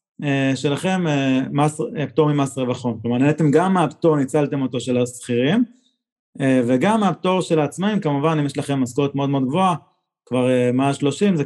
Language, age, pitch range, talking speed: Hebrew, 30-49, 130-175 Hz, 185 wpm